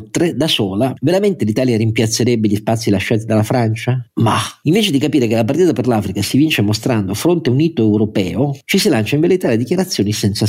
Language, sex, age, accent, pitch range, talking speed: Italian, male, 40-59, native, 100-125 Hz, 195 wpm